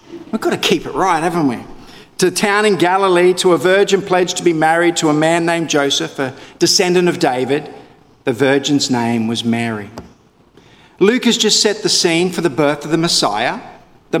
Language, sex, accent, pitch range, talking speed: English, male, Australian, 140-200 Hz, 200 wpm